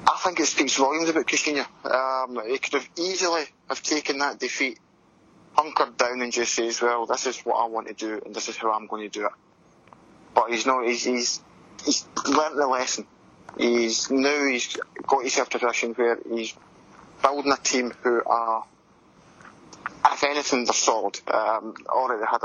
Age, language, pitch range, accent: 20-39, English, 110-130 Hz, British